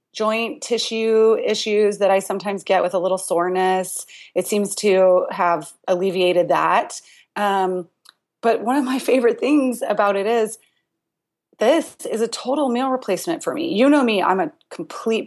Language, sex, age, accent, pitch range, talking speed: English, female, 30-49, American, 185-250 Hz, 160 wpm